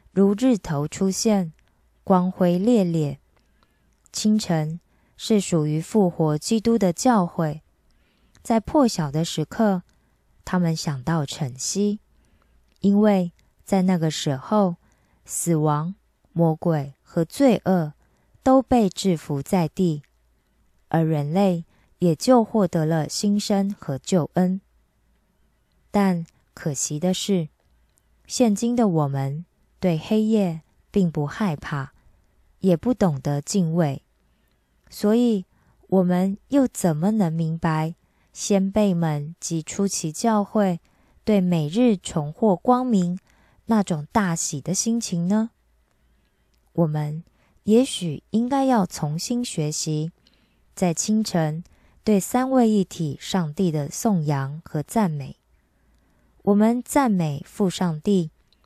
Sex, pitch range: female, 155-205 Hz